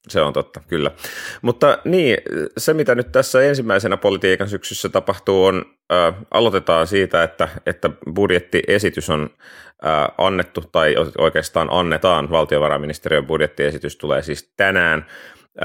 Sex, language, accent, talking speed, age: male, Finnish, native, 115 wpm, 30-49